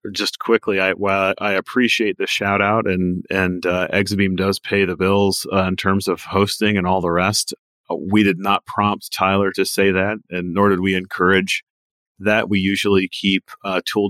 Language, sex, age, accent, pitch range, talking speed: English, male, 30-49, American, 90-100 Hz, 190 wpm